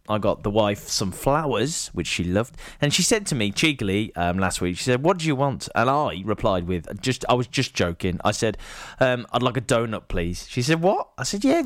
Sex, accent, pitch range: male, British, 100-150 Hz